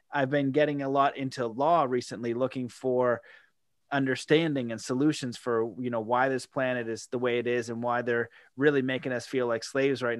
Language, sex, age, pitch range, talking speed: English, male, 20-39, 125-155 Hz, 200 wpm